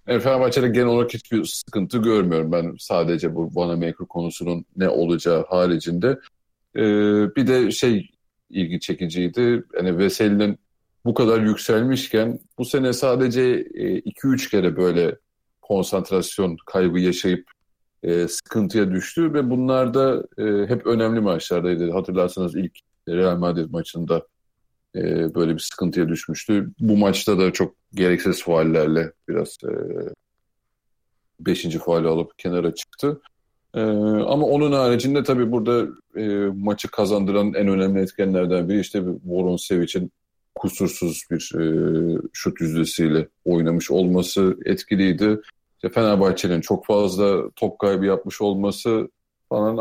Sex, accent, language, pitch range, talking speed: male, native, Turkish, 85-115 Hz, 115 wpm